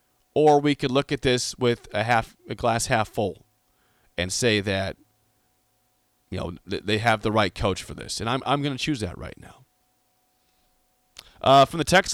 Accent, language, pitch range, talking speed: American, English, 110-155 Hz, 190 wpm